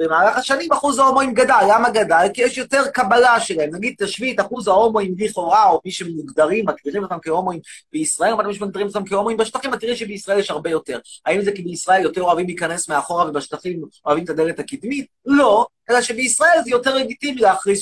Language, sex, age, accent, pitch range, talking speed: Hebrew, male, 30-49, native, 200-275 Hz, 190 wpm